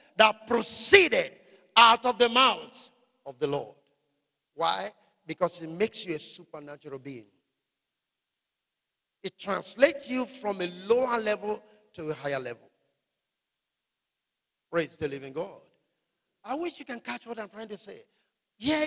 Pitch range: 180-250 Hz